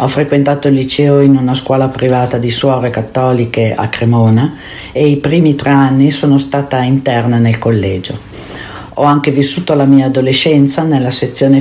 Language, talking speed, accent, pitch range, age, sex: Italian, 160 wpm, native, 120-140 Hz, 50-69, female